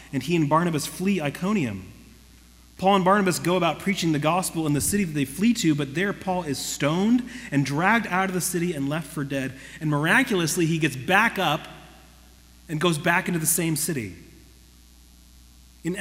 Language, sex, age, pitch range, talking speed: English, male, 30-49, 135-185 Hz, 185 wpm